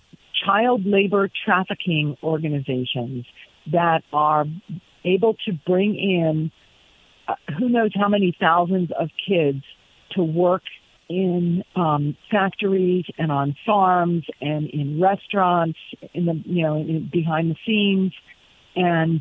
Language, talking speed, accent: English, 120 wpm, American